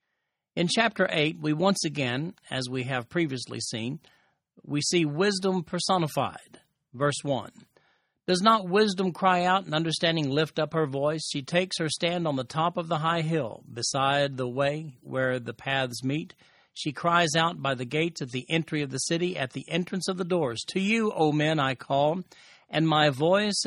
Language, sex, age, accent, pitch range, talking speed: English, male, 50-69, American, 145-175 Hz, 185 wpm